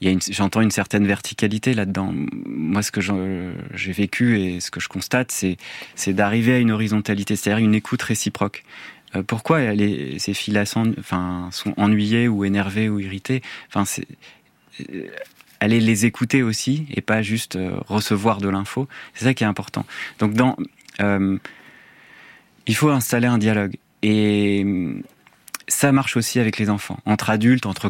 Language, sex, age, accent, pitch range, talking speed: French, male, 30-49, French, 100-120 Hz, 165 wpm